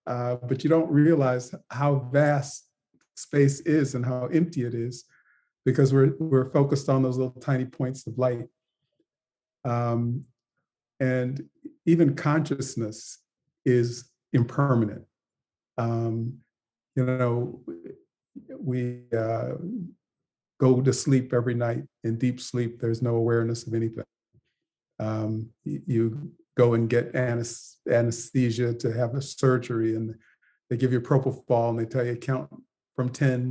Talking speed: 130 wpm